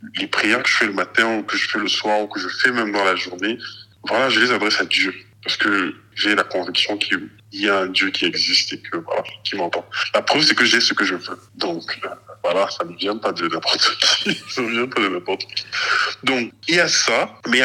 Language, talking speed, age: French, 235 wpm, 20-39